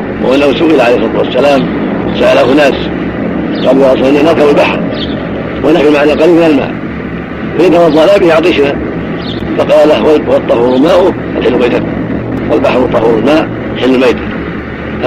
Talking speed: 115 wpm